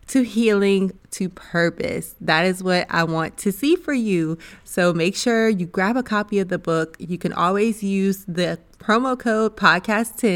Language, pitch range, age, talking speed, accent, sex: English, 180-225 Hz, 20-39, 180 wpm, American, female